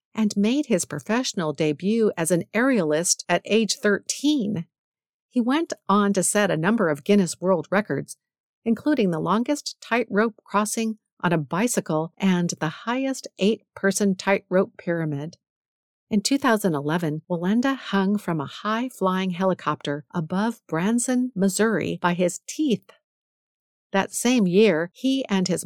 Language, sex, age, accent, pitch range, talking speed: English, female, 50-69, American, 165-220 Hz, 130 wpm